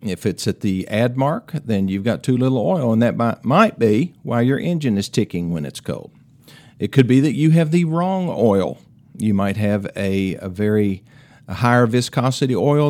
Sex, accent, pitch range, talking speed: male, American, 105-135 Hz, 195 wpm